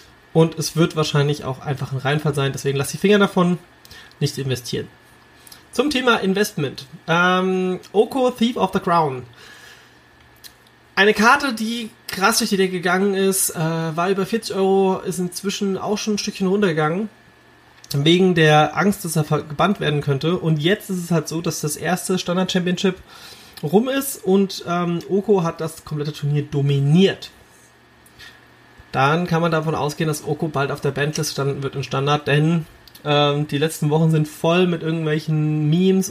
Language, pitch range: German, 150-185 Hz